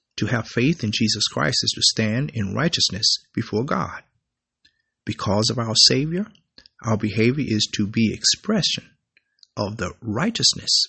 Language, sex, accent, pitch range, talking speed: English, male, American, 105-135 Hz, 145 wpm